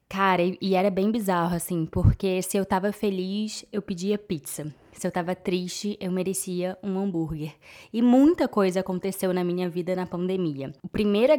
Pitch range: 185-220 Hz